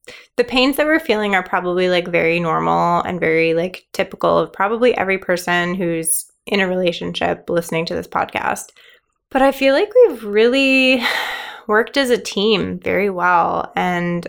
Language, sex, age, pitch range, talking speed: English, female, 20-39, 175-220 Hz, 165 wpm